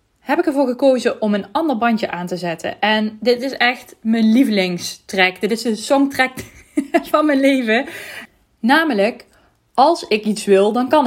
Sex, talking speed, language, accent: female, 170 wpm, Dutch, Dutch